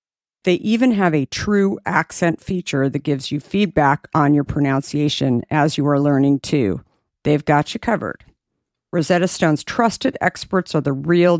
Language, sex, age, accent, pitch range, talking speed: English, female, 50-69, American, 145-185 Hz, 160 wpm